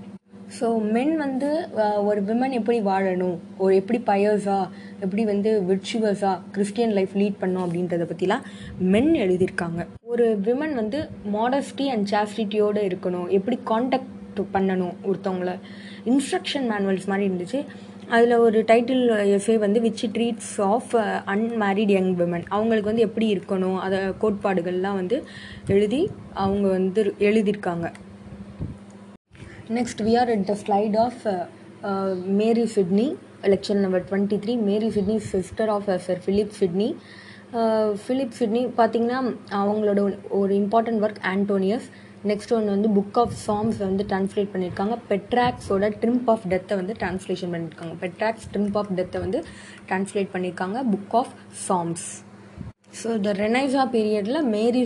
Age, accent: 20-39, Indian